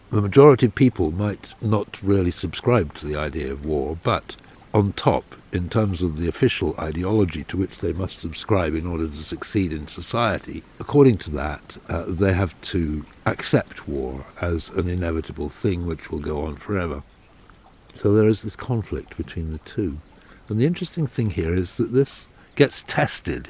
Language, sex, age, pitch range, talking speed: English, male, 60-79, 80-105 Hz, 175 wpm